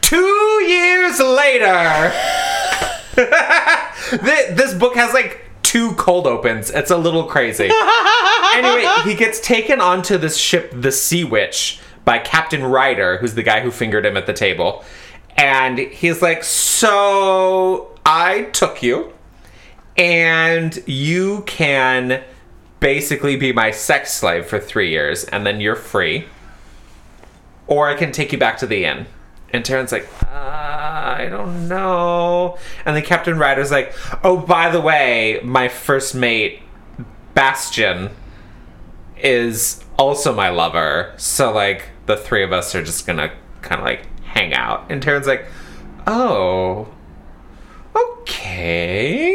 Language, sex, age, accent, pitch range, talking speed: English, male, 30-49, American, 115-185 Hz, 135 wpm